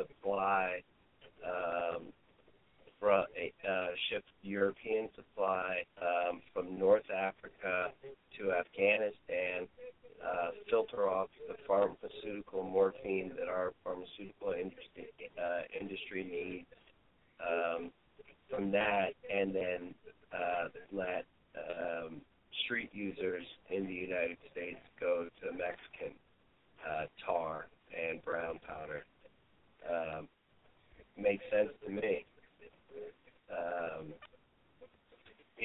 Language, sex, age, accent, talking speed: English, male, 40-59, American, 95 wpm